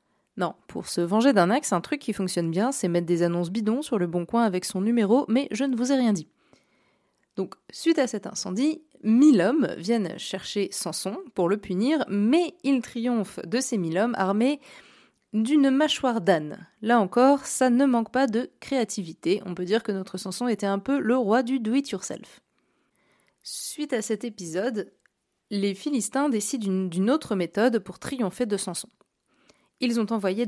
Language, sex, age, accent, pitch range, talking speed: French, female, 20-39, French, 190-245 Hz, 180 wpm